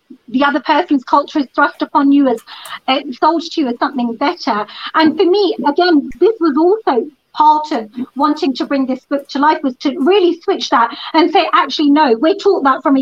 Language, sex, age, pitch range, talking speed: Punjabi, female, 40-59, 270-350 Hz, 215 wpm